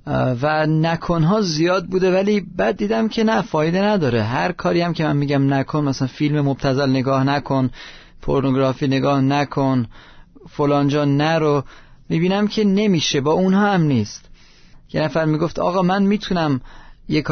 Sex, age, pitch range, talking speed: male, 30-49, 135-190 Hz, 150 wpm